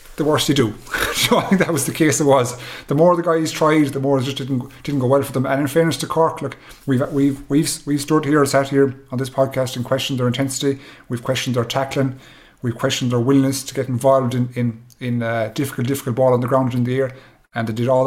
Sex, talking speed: male, 260 wpm